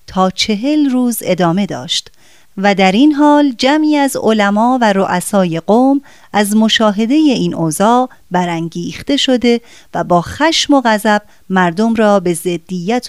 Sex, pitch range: female, 185-260 Hz